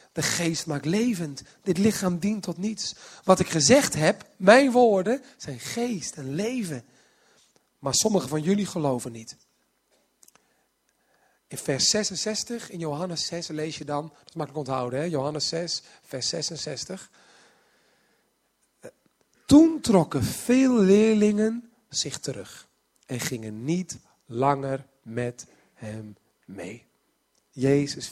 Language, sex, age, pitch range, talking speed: Dutch, male, 40-59, 140-210 Hz, 120 wpm